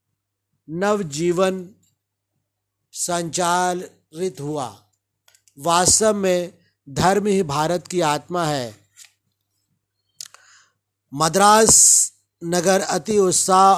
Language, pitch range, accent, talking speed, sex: Hindi, 155-190 Hz, native, 65 wpm, male